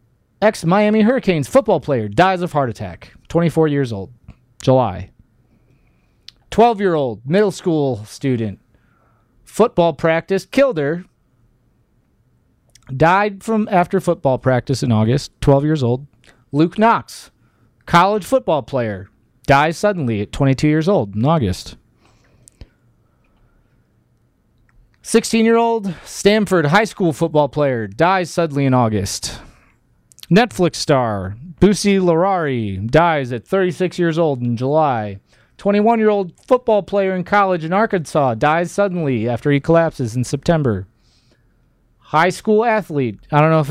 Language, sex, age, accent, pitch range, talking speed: English, male, 30-49, American, 125-200 Hz, 115 wpm